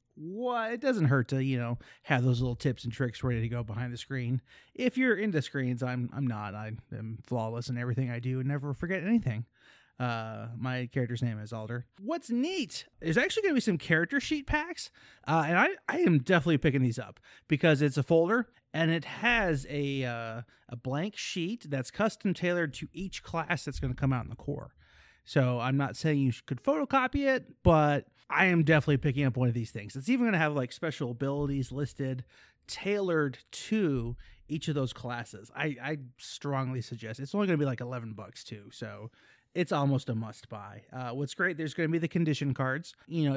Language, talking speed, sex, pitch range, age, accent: English, 210 wpm, male, 120-165 Hz, 30-49, American